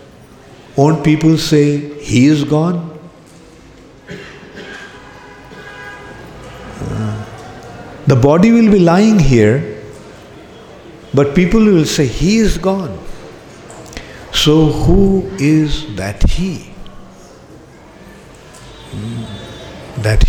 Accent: Indian